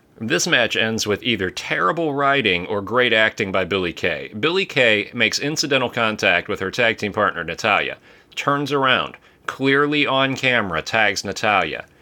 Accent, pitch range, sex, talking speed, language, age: American, 105-140 Hz, male, 155 wpm, English, 30-49